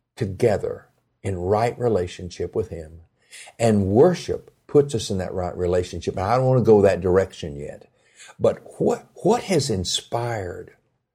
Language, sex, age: English, male, 60-79